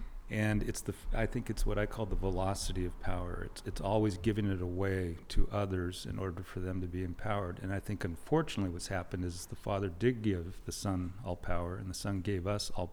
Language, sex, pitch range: English, male, 90-105 Hz